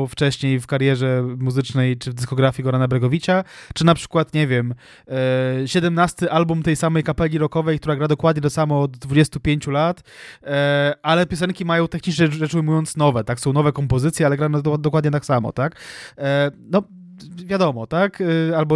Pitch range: 130-155 Hz